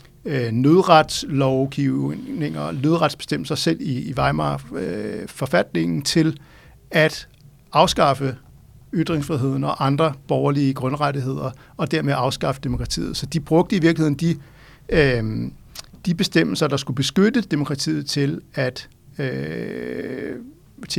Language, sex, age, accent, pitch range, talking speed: Danish, male, 60-79, native, 130-155 Hz, 95 wpm